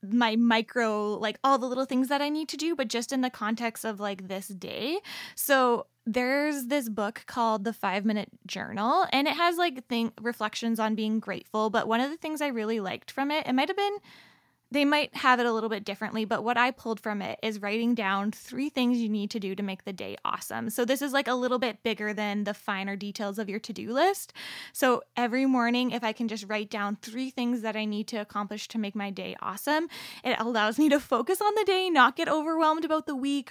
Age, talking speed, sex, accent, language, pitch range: 20-39, 235 wpm, female, American, English, 210-255 Hz